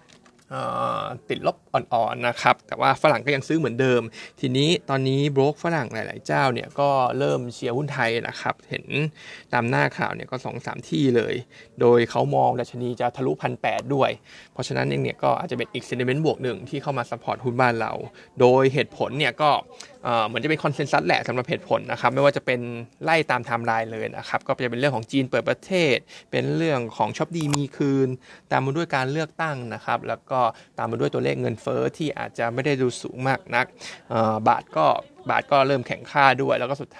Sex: male